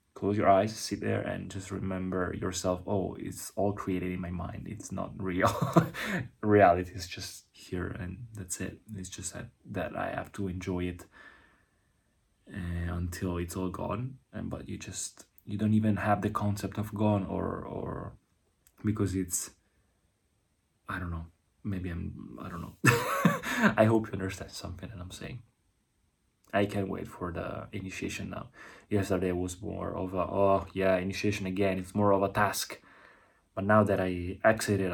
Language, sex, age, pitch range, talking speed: Italian, male, 20-39, 95-105 Hz, 165 wpm